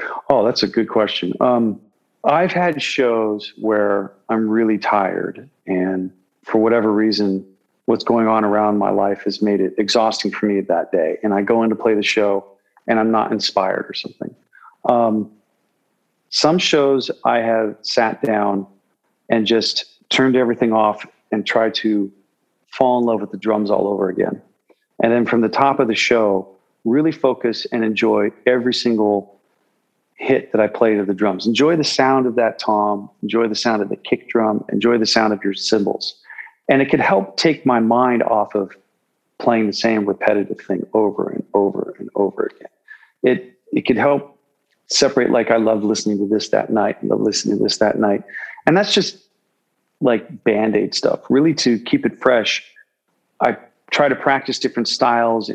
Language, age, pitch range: English, 40-59, 105-125 Hz